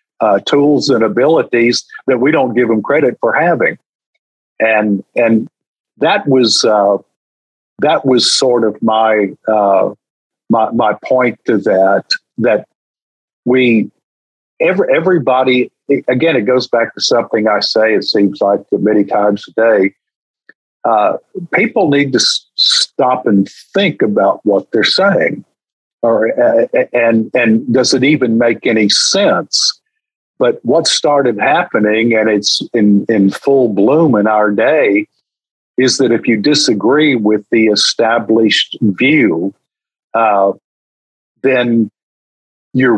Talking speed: 130 wpm